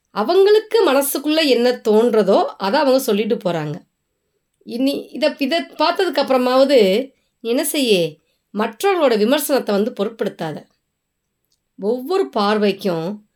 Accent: native